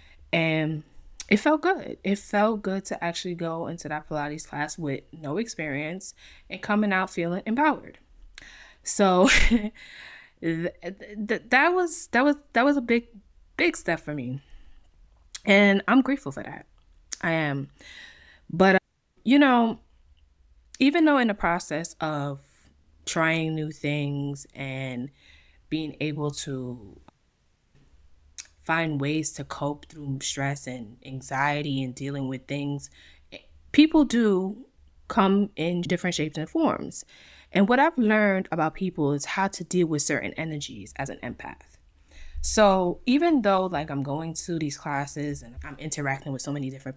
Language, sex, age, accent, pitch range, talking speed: English, female, 20-39, American, 135-195 Hz, 145 wpm